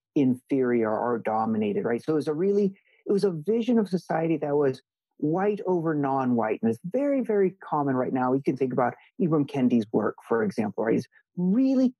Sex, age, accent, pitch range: male, 50-69, American, 135-220 Hz